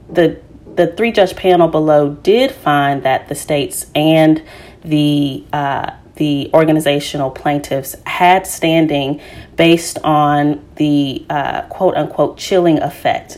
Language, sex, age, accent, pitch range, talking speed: English, female, 30-49, American, 145-155 Hz, 115 wpm